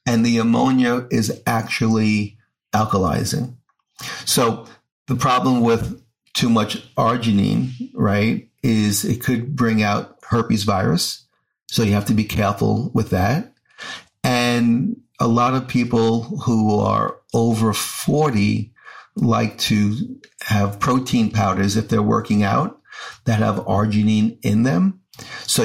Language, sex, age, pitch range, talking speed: English, male, 50-69, 105-125 Hz, 125 wpm